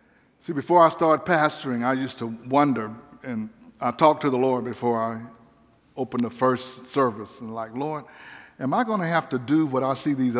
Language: English